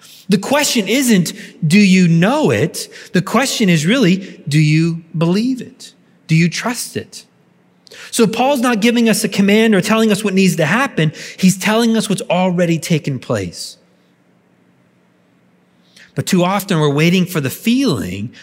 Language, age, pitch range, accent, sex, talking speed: English, 30-49, 140-200 Hz, American, male, 155 wpm